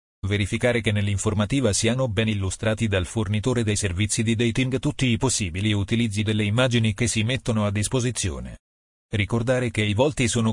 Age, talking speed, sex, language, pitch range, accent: 40-59, 160 wpm, male, Italian, 105-120 Hz, native